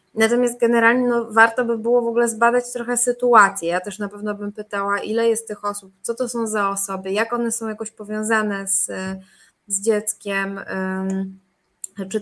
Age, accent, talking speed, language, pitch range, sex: 20-39, native, 170 wpm, Polish, 205-235 Hz, female